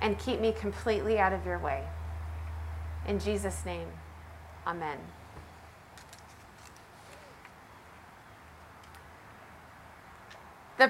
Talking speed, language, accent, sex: 70 wpm, English, American, female